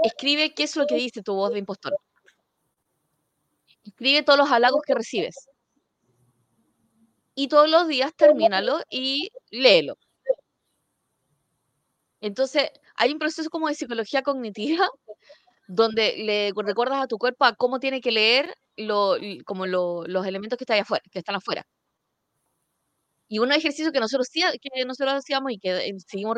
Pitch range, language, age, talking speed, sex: 210-285 Hz, Spanish, 20-39, 150 wpm, female